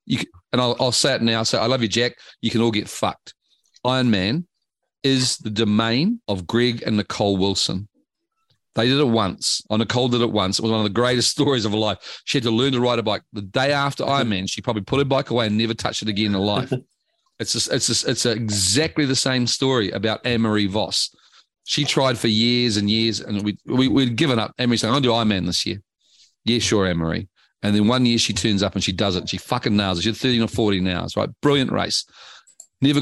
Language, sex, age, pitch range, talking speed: English, male, 40-59, 105-130 Hz, 245 wpm